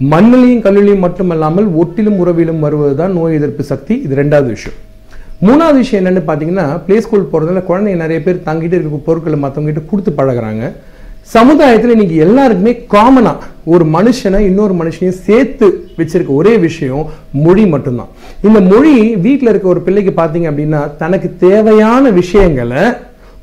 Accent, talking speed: native, 95 wpm